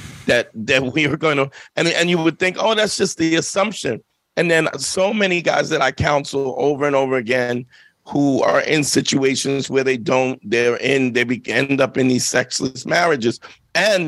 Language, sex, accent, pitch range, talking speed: English, male, American, 130-160 Hz, 195 wpm